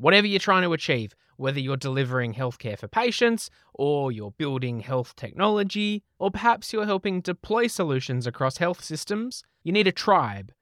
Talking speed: 165 wpm